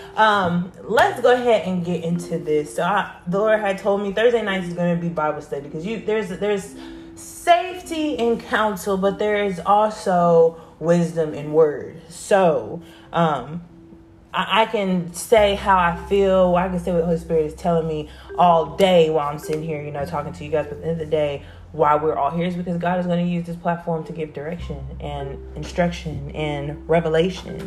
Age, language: 20-39, English